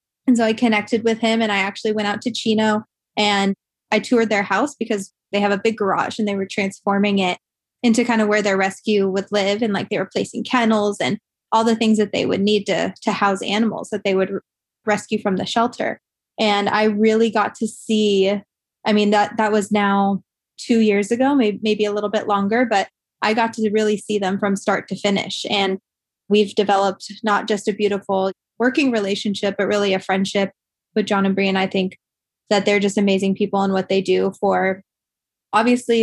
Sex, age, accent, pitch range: female, 20-39, American, 195-215 Hz